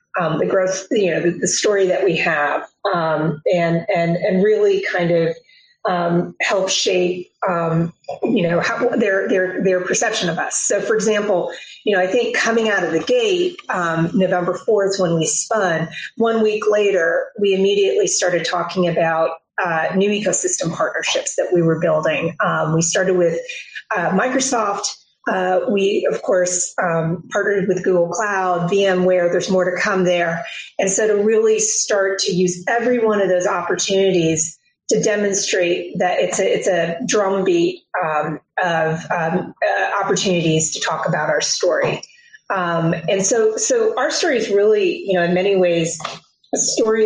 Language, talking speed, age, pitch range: English, 170 wpm, 30-49, 175-215 Hz